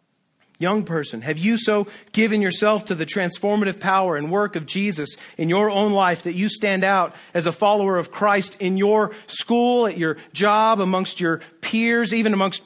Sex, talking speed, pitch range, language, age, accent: male, 185 wpm, 160-205 Hz, English, 40-59, American